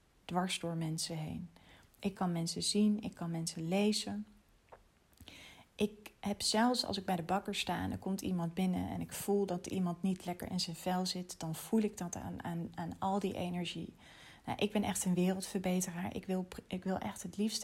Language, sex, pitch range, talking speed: Dutch, female, 175-200 Hz, 205 wpm